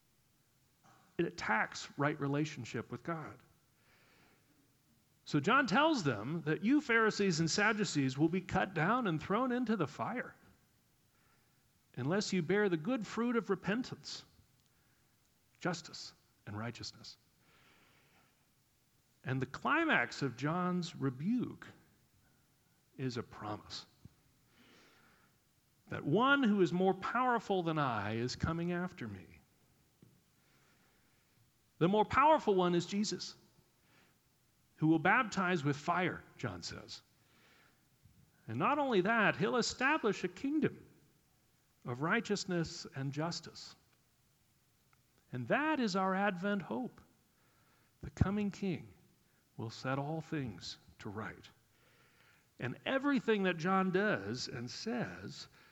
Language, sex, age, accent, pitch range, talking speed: English, male, 50-69, American, 125-200 Hz, 110 wpm